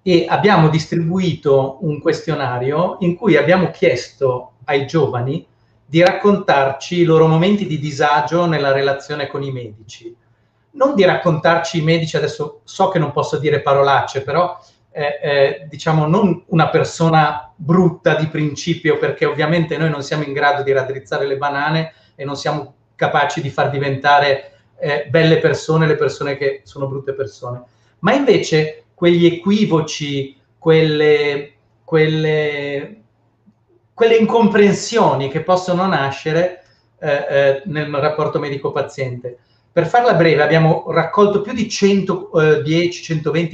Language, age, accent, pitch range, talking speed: Italian, 30-49, native, 140-175 Hz, 130 wpm